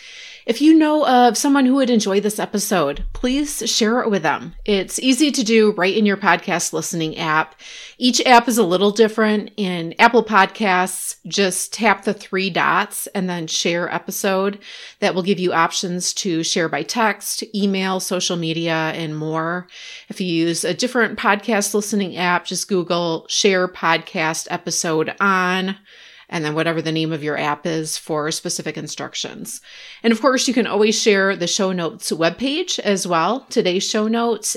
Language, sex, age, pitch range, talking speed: English, female, 30-49, 170-215 Hz, 170 wpm